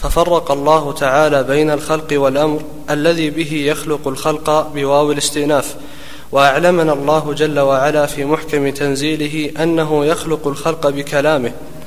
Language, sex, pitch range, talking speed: Arabic, male, 145-160 Hz, 115 wpm